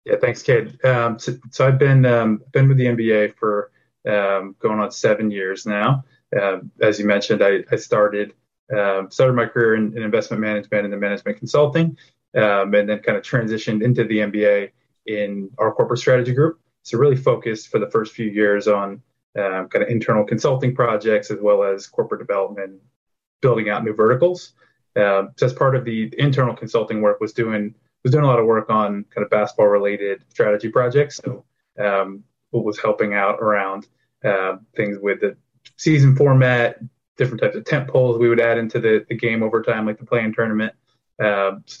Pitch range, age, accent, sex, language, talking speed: 105-130 Hz, 20-39, American, male, English, 190 wpm